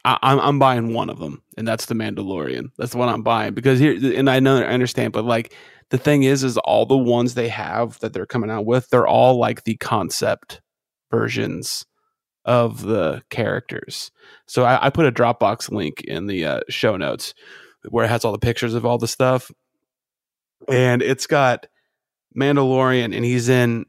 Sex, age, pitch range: male, 30-49, 120-140 Hz